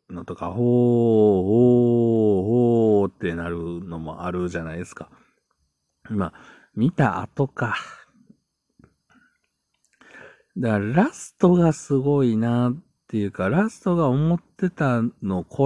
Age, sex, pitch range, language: 50-69, male, 90-135 Hz, Japanese